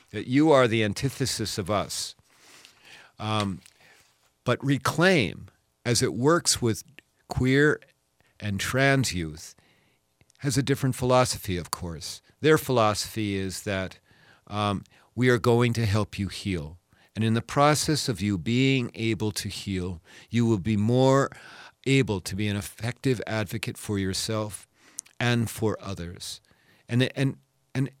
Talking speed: 135 wpm